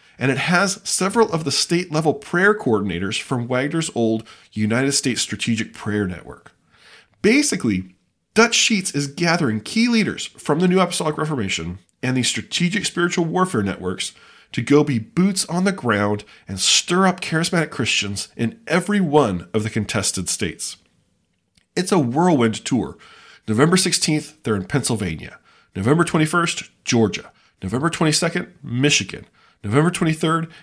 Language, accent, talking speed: English, American, 140 wpm